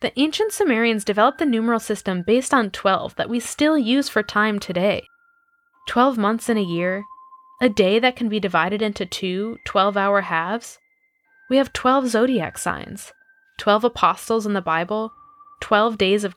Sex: female